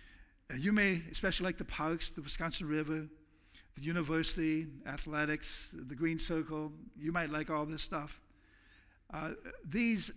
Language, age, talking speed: English, 60-79, 135 wpm